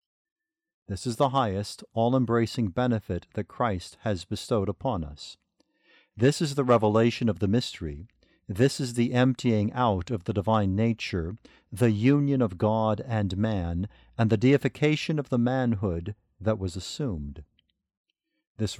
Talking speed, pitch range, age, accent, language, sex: 140 wpm, 100-130 Hz, 50-69, American, English, male